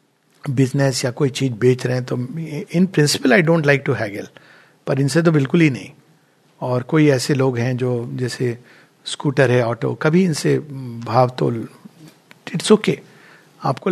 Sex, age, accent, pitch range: male, 60-79, native, 140-195 Hz